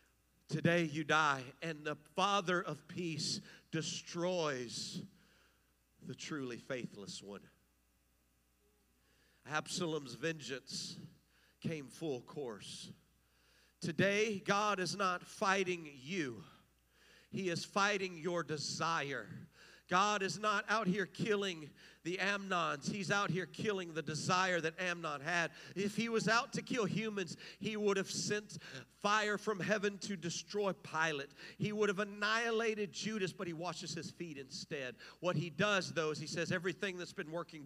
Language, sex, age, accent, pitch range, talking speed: English, male, 50-69, American, 155-195 Hz, 135 wpm